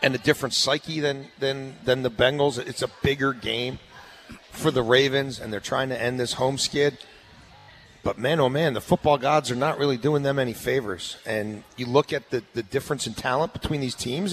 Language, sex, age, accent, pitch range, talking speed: English, male, 40-59, American, 125-150 Hz, 210 wpm